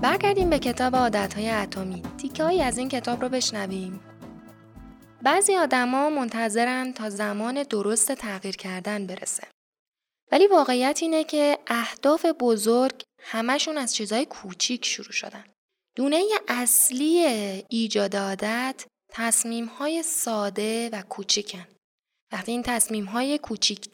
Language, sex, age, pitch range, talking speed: Persian, female, 10-29, 205-280 Hz, 115 wpm